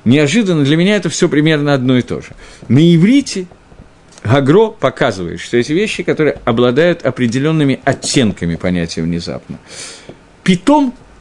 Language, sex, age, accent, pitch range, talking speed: Russian, male, 50-69, native, 120-180 Hz, 130 wpm